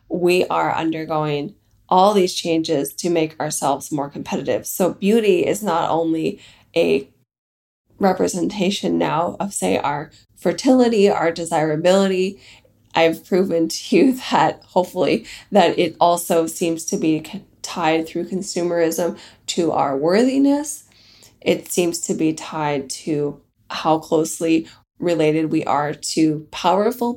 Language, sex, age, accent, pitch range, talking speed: English, female, 20-39, American, 160-205 Hz, 125 wpm